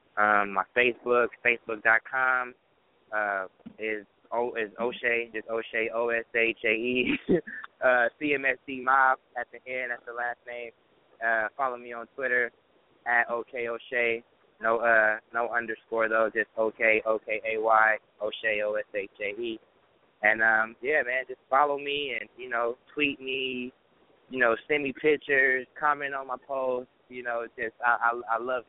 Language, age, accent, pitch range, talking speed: English, 20-39, American, 105-125 Hz, 140 wpm